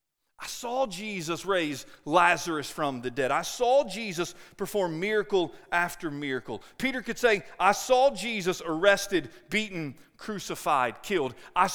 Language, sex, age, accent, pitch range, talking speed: English, male, 40-59, American, 160-235 Hz, 135 wpm